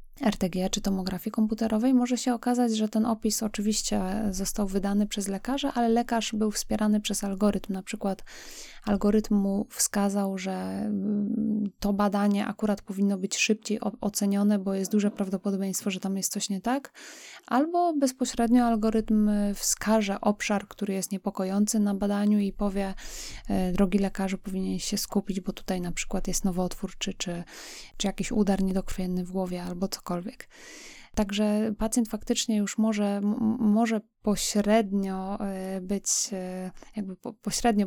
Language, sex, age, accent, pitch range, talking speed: Polish, female, 20-39, native, 195-220 Hz, 130 wpm